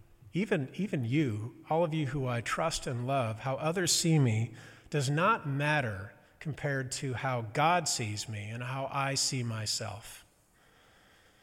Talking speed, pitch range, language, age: 150 wpm, 115-155 Hz, English, 40-59